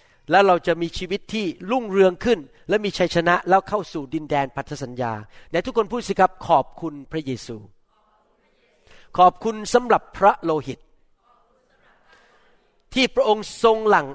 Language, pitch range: Thai, 150-215 Hz